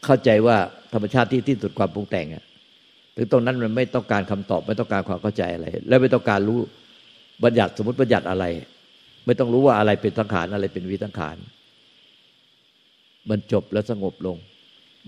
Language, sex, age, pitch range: Thai, male, 60-79, 95-115 Hz